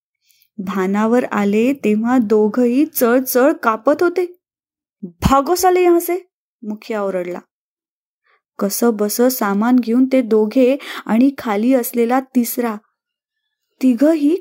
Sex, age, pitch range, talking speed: female, 20-39, 225-275 Hz, 80 wpm